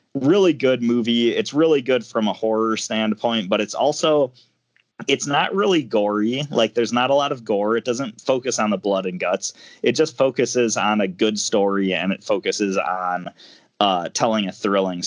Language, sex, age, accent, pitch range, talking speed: English, male, 20-39, American, 95-120 Hz, 185 wpm